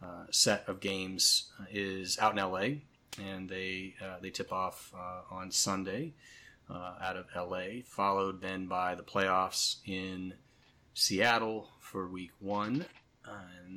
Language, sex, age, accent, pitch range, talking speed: English, male, 30-49, American, 90-100 Hz, 140 wpm